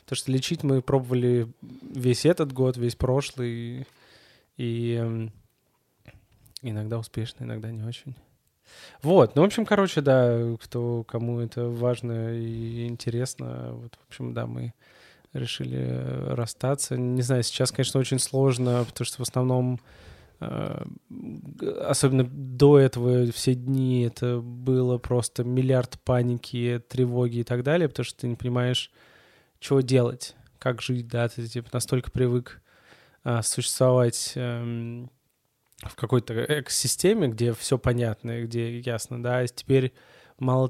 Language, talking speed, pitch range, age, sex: Russian, 125 wpm, 120-130 Hz, 20-39, male